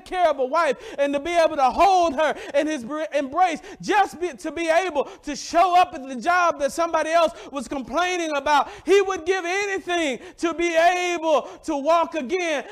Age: 40-59